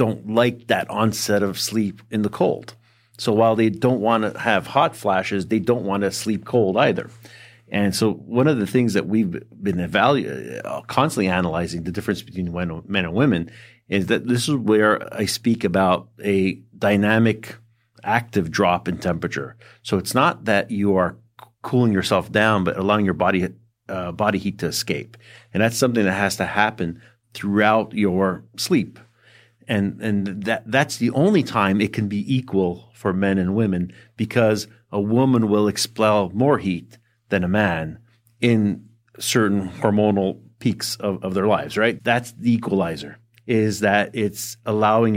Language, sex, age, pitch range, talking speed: English, male, 40-59, 95-115 Hz, 165 wpm